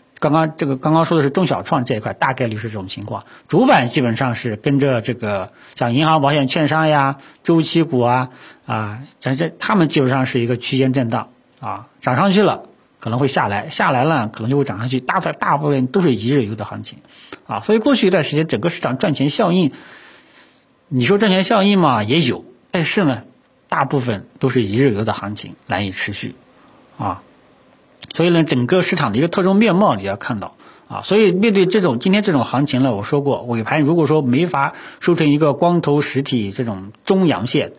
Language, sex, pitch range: Chinese, male, 125-165 Hz